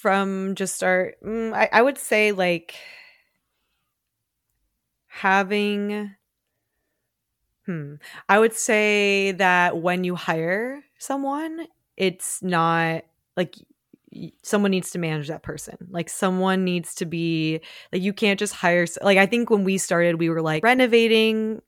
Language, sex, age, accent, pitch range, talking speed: English, female, 20-39, American, 165-210 Hz, 125 wpm